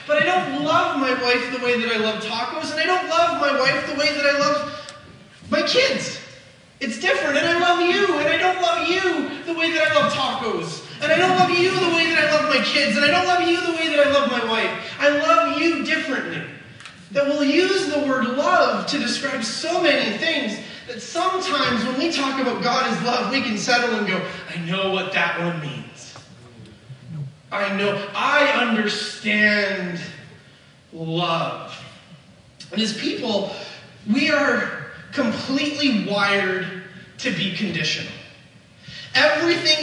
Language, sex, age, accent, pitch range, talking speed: English, male, 30-49, American, 200-295 Hz, 175 wpm